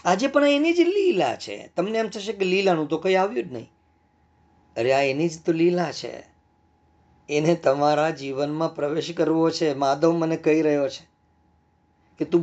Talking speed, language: 135 wpm, Gujarati